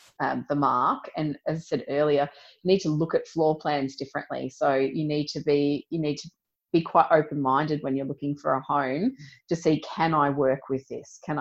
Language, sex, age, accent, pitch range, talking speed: English, female, 30-49, Australian, 140-160 Hz, 220 wpm